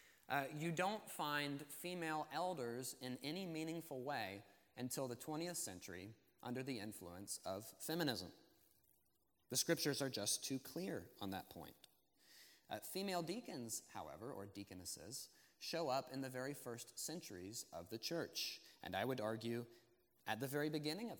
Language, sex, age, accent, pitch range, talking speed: English, male, 30-49, American, 115-145 Hz, 150 wpm